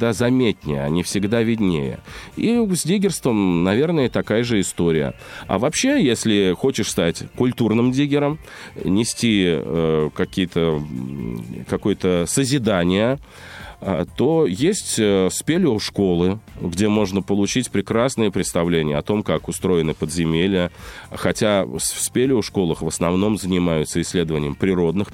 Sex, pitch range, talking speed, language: male, 85-120 Hz, 100 wpm, Russian